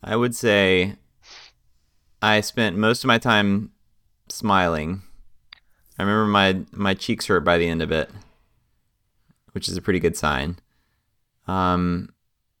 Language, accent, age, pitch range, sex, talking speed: English, American, 20-39, 85-110 Hz, male, 135 wpm